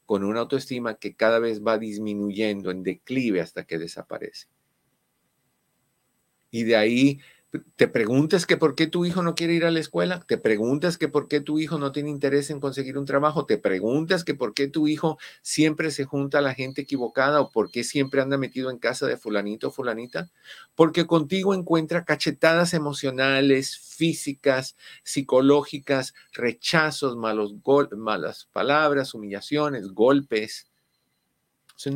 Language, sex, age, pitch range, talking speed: Spanish, male, 50-69, 125-155 Hz, 160 wpm